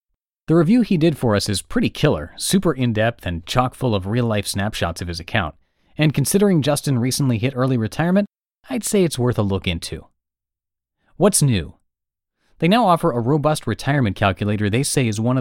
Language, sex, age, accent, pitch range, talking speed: English, male, 30-49, American, 100-145 Hz, 185 wpm